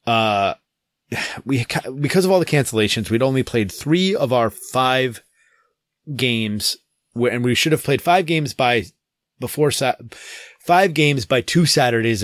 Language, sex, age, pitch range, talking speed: English, male, 30-49, 115-145 Hz, 145 wpm